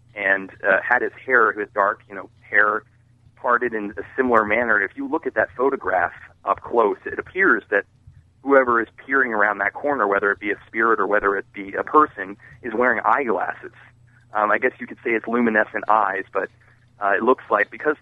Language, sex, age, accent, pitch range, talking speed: English, male, 30-49, American, 100-120 Hz, 205 wpm